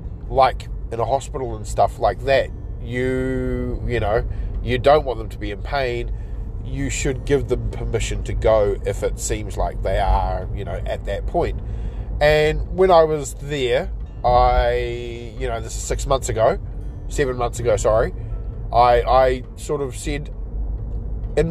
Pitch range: 100-130 Hz